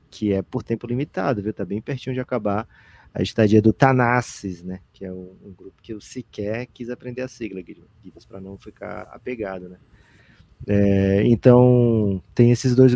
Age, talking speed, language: 20-39, 185 wpm, Portuguese